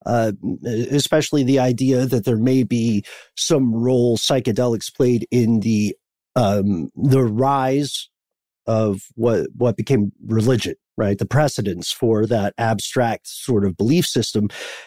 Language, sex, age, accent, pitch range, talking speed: English, male, 50-69, American, 110-150 Hz, 130 wpm